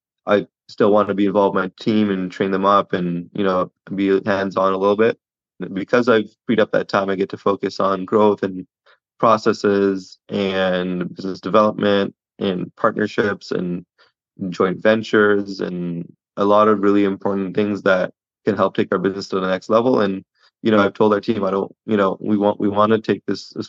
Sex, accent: male, American